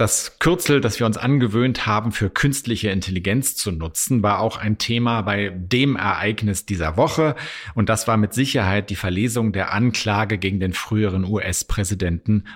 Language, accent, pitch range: German, German, 95-125 Hz